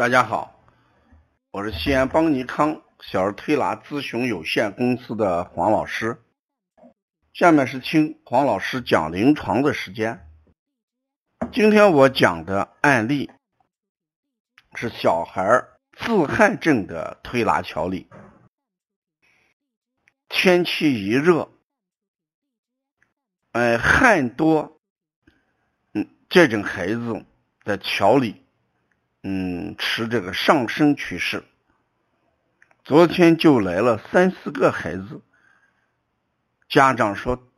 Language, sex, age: Chinese, male, 50-69